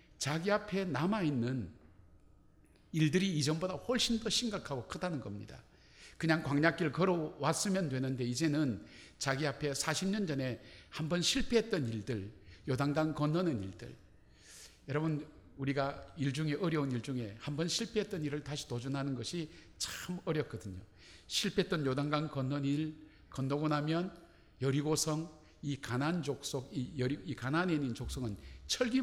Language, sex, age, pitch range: Korean, male, 50-69, 120-170 Hz